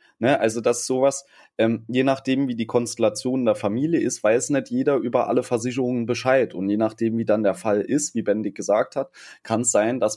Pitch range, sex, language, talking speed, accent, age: 100-125 Hz, male, German, 220 wpm, German, 20-39